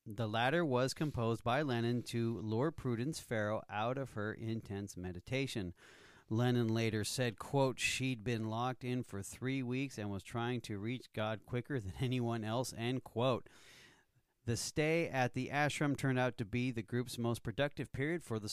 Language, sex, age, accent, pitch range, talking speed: English, male, 40-59, American, 110-130 Hz, 175 wpm